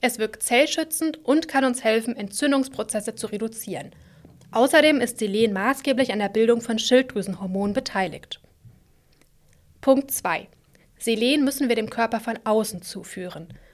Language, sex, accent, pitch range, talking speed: German, female, German, 210-265 Hz, 130 wpm